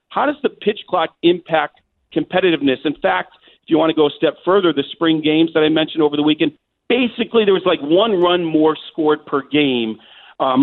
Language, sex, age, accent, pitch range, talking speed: English, male, 40-59, American, 140-170 Hz, 210 wpm